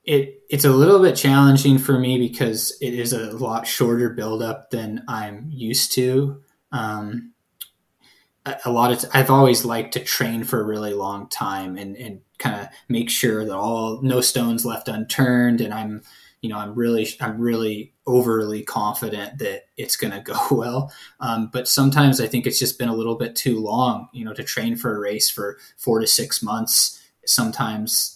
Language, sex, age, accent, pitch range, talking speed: English, male, 20-39, American, 105-125 Hz, 190 wpm